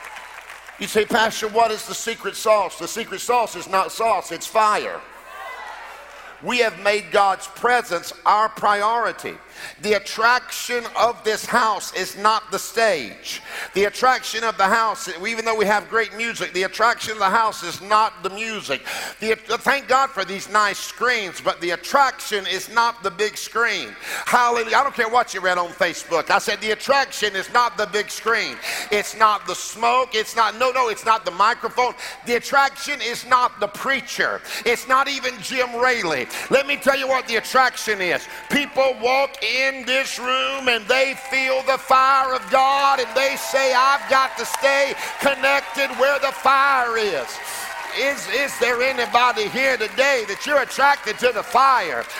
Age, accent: 50-69, American